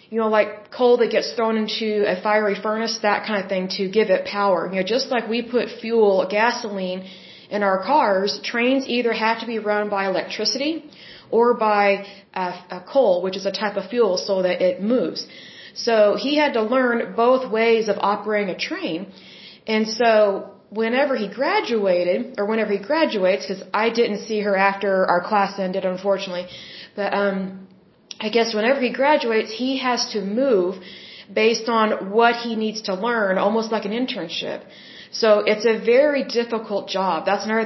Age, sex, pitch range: 30-49, female, 195-230 Hz